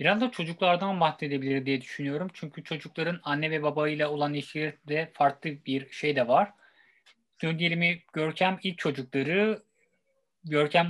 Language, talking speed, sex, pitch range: Turkish, 125 wpm, male, 150-190 Hz